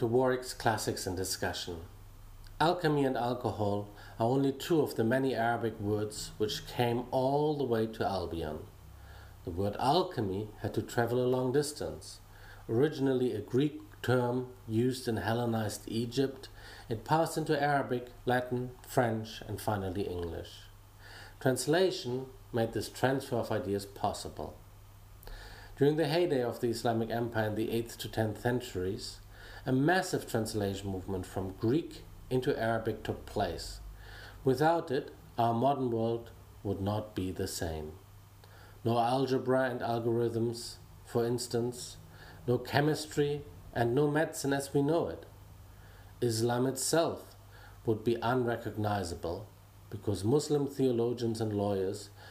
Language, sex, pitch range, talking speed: English, male, 100-125 Hz, 130 wpm